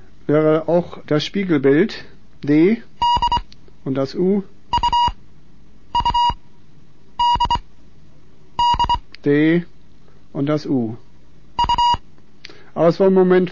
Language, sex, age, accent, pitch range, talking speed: German, male, 60-79, German, 145-210 Hz, 75 wpm